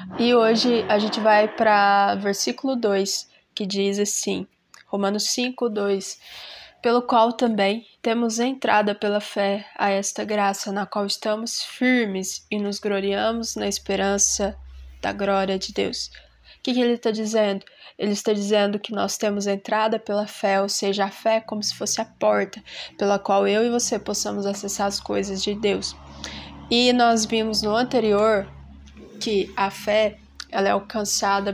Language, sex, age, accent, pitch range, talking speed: Portuguese, female, 20-39, Brazilian, 200-220 Hz, 155 wpm